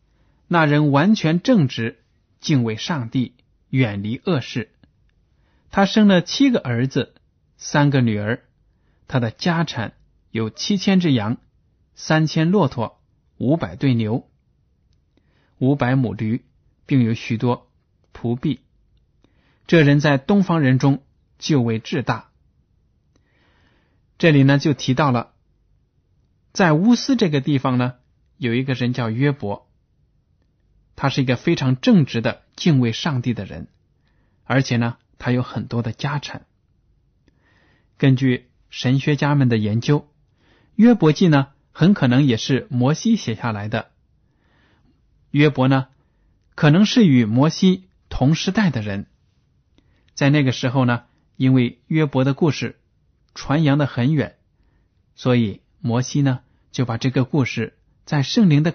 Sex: male